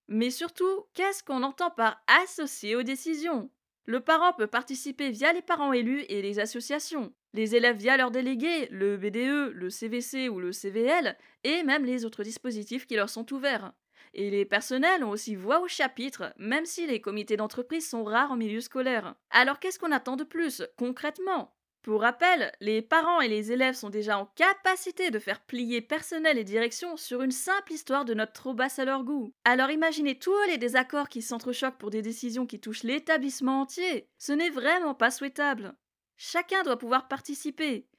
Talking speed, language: 185 wpm, French